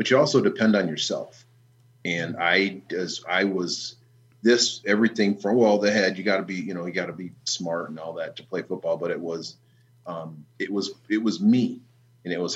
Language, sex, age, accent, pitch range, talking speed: English, male, 40-59, American, 85-120 Hz, 220 wpm